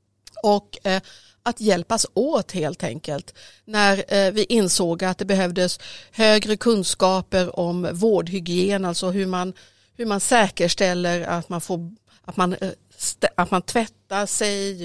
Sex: female